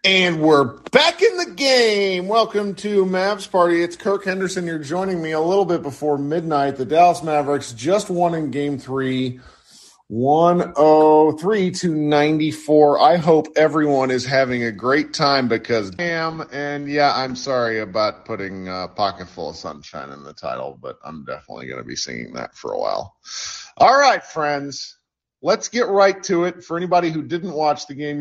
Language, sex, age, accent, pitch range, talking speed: English, male, 40-59, American, 125-175 Hz, 175 wpm